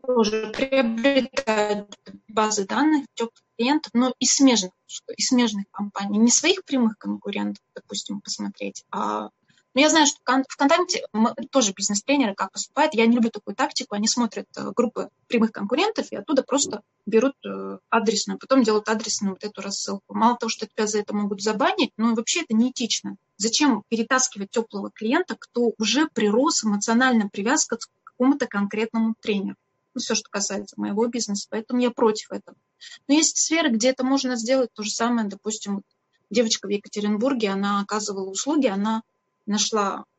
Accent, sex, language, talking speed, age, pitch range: native, female, Russian, 155 wpm, 20-39, 205-260 Hz